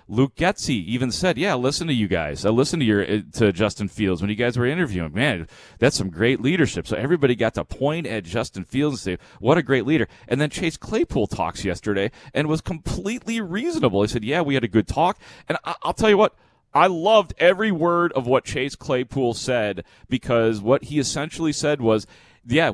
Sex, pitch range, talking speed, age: male, 110-145 Hz, 210 wpm, 30-49